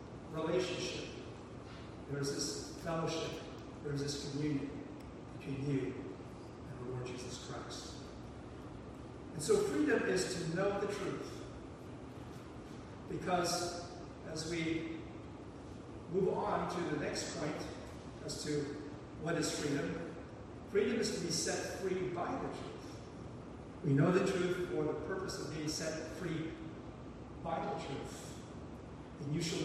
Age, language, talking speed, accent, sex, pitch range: 50-69, English, 120 wpm, American, male, 140-170 Hz